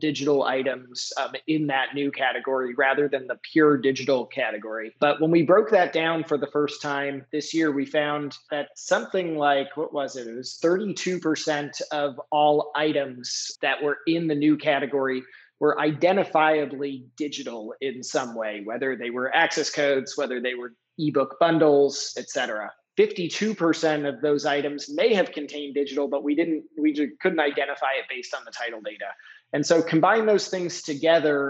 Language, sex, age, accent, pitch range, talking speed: English, male, 20-39, American, 135-160 Hz, 170 wpm